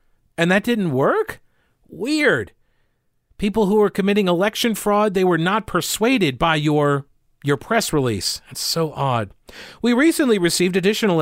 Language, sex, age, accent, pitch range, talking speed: English, male, 40-59, American, 135-190 Hz, 145 wpm